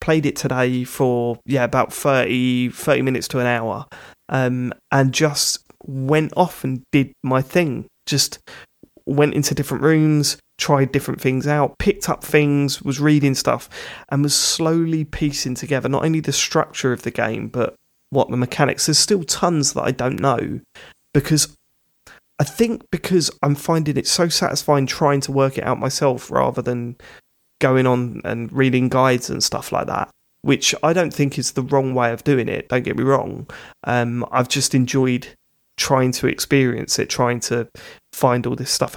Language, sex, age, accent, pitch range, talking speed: English, male, 20-39, British, 125-145 Hz, 175 wpm